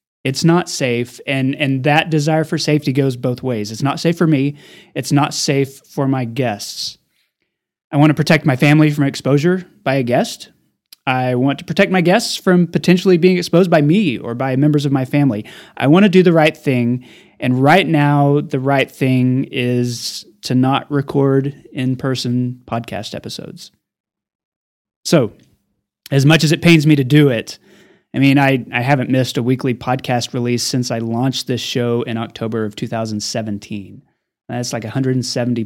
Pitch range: 125-160 Hz